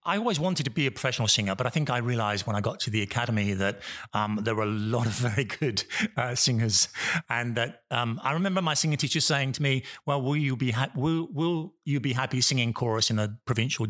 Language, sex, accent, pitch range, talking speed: English, male, British, 110-135 Hz, 240 wpm